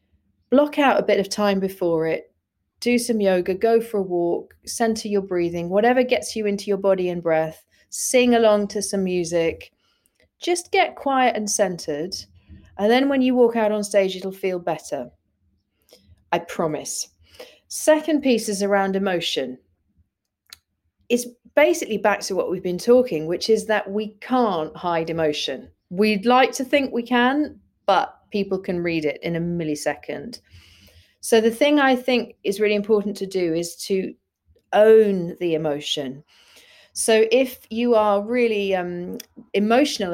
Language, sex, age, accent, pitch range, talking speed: English, female, 40-59, British, 165-225 Hz, 155 wpm